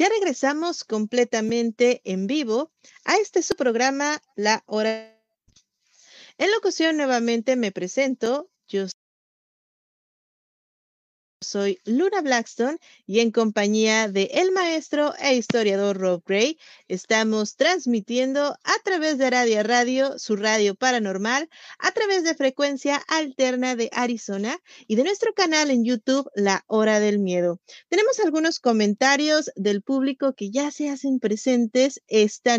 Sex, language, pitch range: female, Spanish, 215-285 Hz